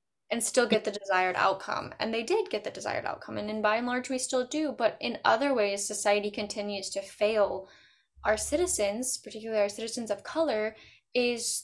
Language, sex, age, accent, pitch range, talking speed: English, female, 10-29, American, 205-240 Hz, 185 wpm